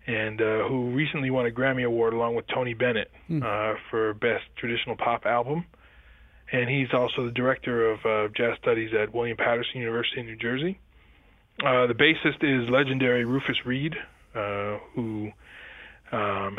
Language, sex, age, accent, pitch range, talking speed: English, male, 20-39, American, 110-125 Hz, 155 wpm